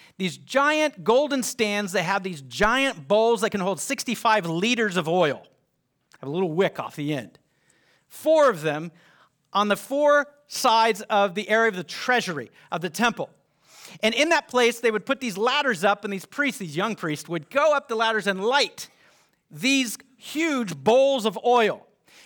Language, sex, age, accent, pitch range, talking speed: English, male, 40-59, American, 185-250 Hz, 180 wpm